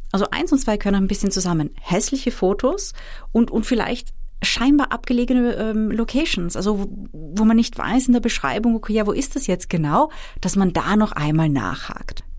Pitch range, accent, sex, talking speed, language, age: 160-225 Hz, German, female, 190 wpm, German, 30-49